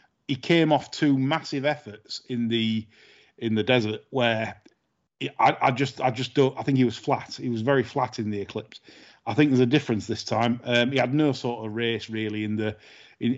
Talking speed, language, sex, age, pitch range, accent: 220 wpm, English, male, 40-59, 115-135 Hz, British